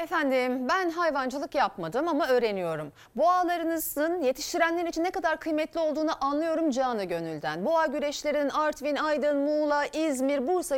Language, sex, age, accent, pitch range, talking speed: Turkish, female, 40-59, native, 240-330 Hz, 130 wpm